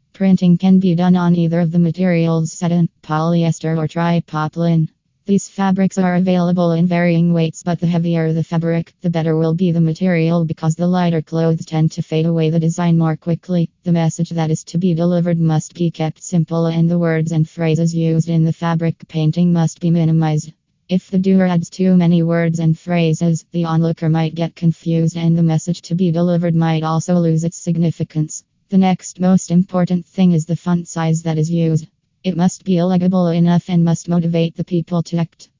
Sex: female